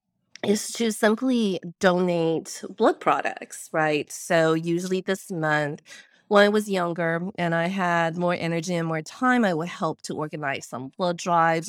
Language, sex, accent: English, female, American